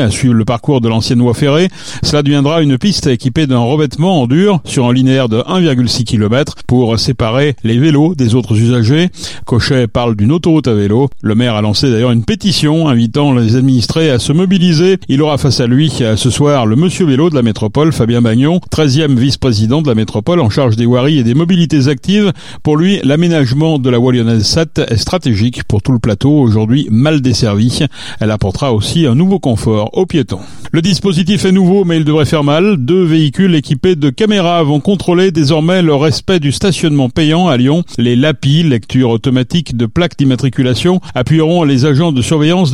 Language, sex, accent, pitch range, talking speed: French, male, French, 120-160 Hz, 190 wpm